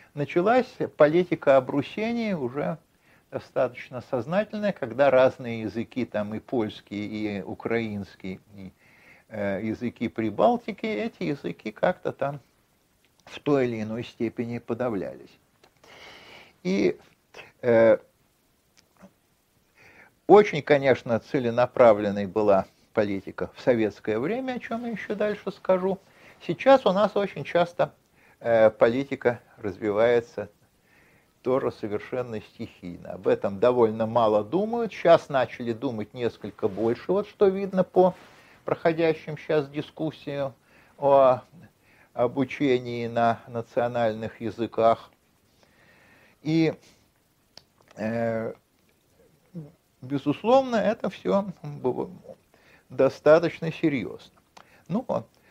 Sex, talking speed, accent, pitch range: male, 90 wpm, native, 115-170 Hz